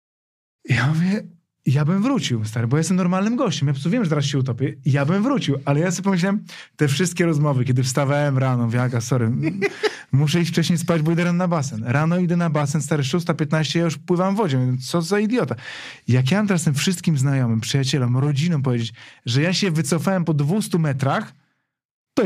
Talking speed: 190 wpm